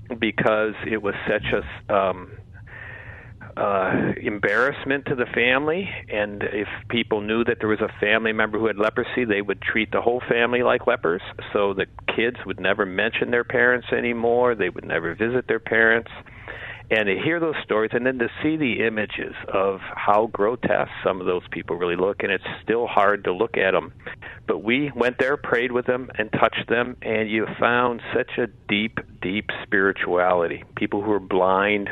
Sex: male